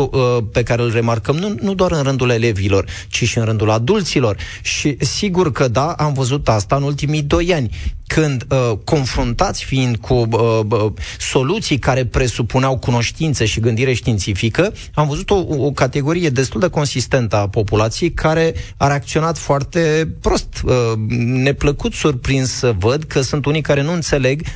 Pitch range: 115-150 Hz